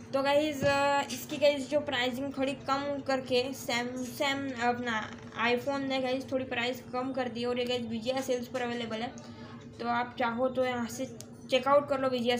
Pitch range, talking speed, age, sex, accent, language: 235-280 Hz, 185 wpm, 20-39, female, native, Hindi